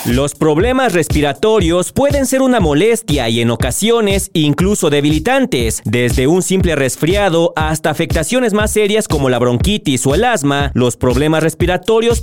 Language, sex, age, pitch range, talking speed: Spanish, male, 40-59, 140-205 Hz, 140 wpm